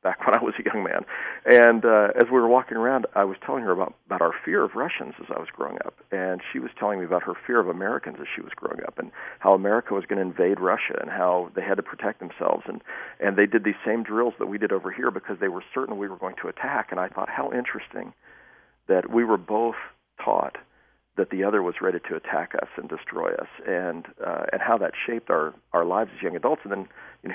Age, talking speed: 50-69, 255 wpm